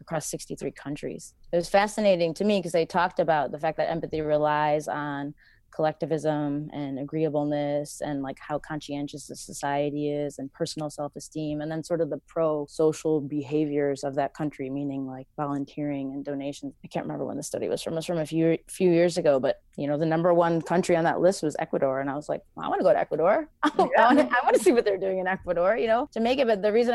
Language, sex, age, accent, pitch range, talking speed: English, female, 20-39, American, 150-195 Hz, 225 wpm